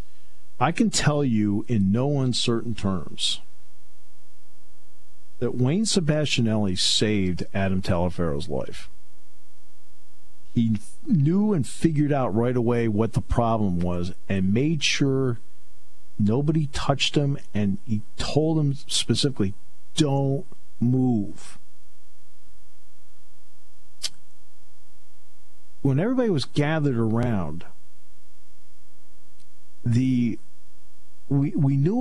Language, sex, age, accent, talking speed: English, male, 50-69, American, 90 wpm